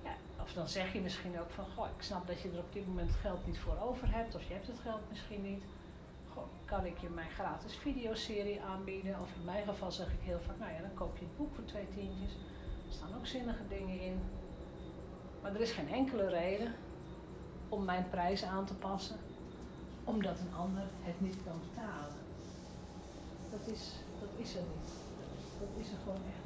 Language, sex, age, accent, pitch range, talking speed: Dutch, female, 40-59, Dutch, 180-230 Hz, 205 wpm